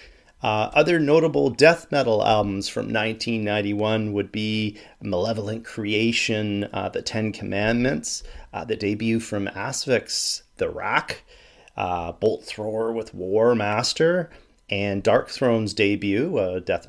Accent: American